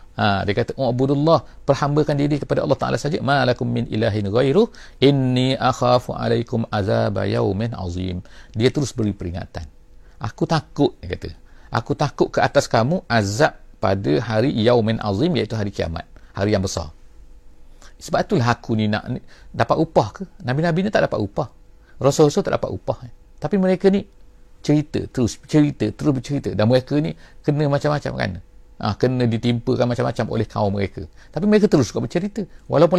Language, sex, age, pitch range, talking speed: English, male, 50-69, 100-140 Hz, 160 wpm